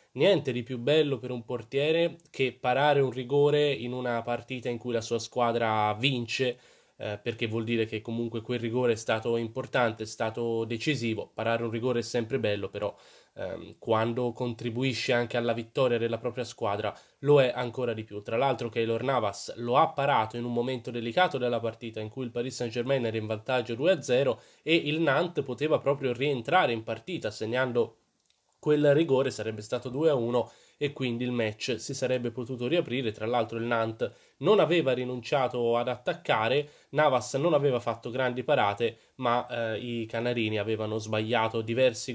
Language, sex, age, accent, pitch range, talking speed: Italian, male, 20-39, native, 115-130 Hz, 170 wpm